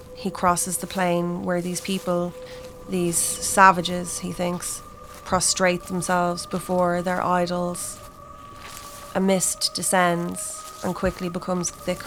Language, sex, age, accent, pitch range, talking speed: English, female, 20-39, Irish, 175-185 Hz, 115 wpm